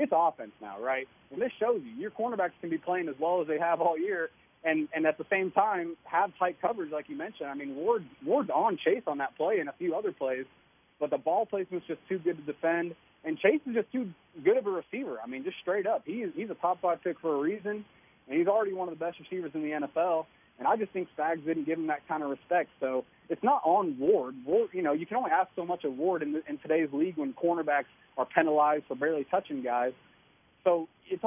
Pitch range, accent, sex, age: 140-185 Hz, American, male, 30-49